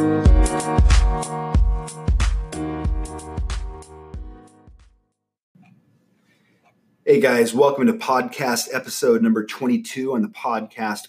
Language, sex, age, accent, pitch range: English, male, 30-49, American, 105-125 Hz